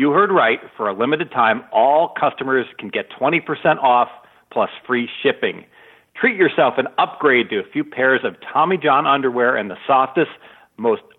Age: 50-69